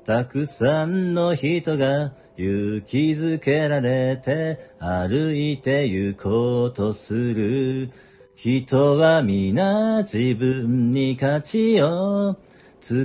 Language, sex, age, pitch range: Japanese, male, 40-59, 125-175 Hz